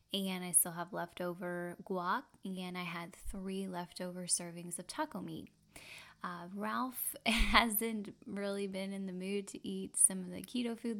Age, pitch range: 10-29, 180-215 Hz